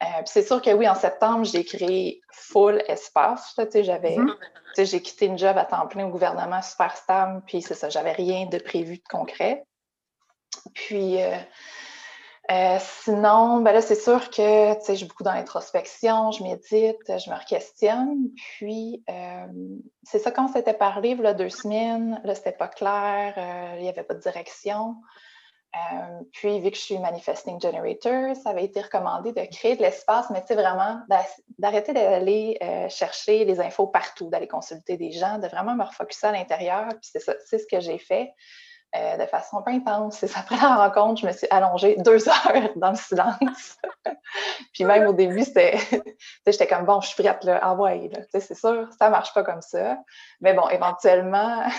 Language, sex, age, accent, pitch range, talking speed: French, female, 20-39, Canadian, 185-235 Hz, 185 wpm